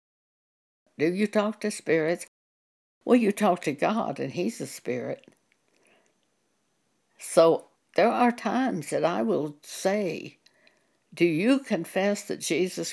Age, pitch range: 60-79, 150-205 Hz